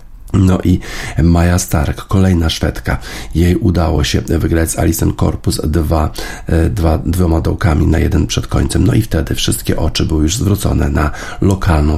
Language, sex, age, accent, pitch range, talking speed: Polish, male, 50-69, native, 80-95 Hz, 150 wpm